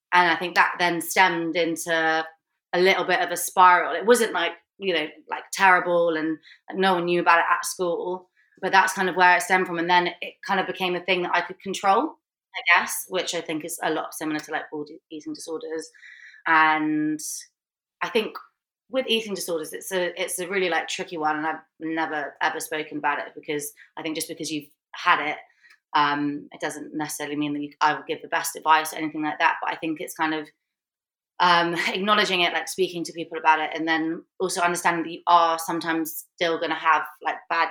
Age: 20-39